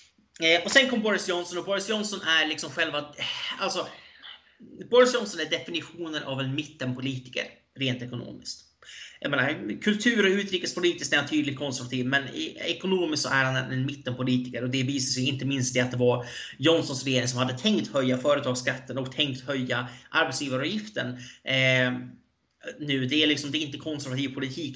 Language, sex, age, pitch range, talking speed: Swedish, male, 30-49, 125-160 Hz, 165 wpm